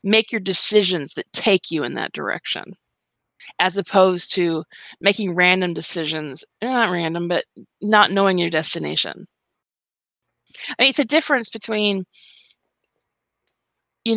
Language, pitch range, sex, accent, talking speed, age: English, 175-220 Hz, female, American, 125 wpm, 20-39